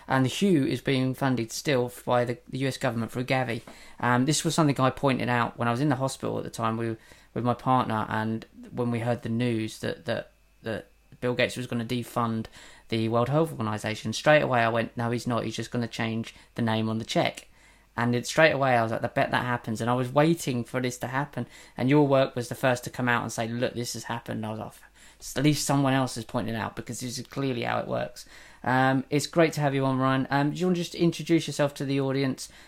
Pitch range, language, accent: 120-140 Hz, English, British